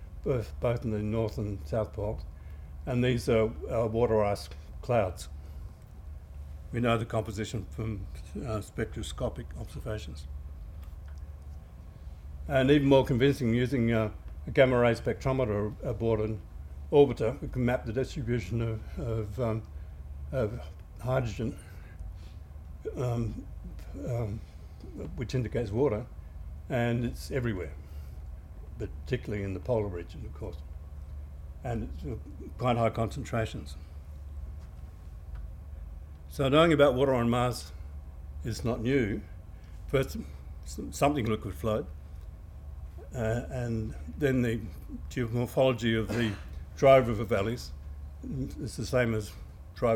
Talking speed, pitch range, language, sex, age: 110 wpm, 75-115 Hz, English, male, 60-79